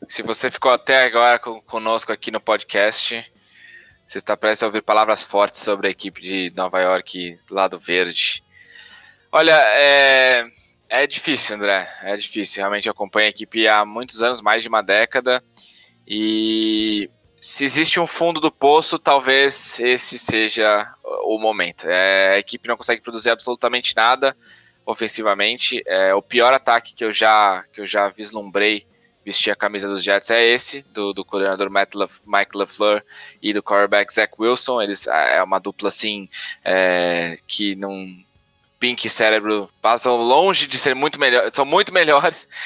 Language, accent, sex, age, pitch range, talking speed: English, Brazilian, male, 20-39, 100-125 Hz, 155 wpm